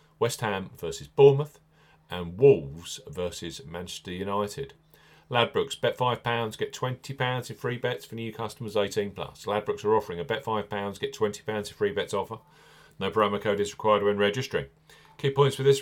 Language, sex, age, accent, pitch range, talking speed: English, male, 40-59, British, 105-145 Hz, 165 wpm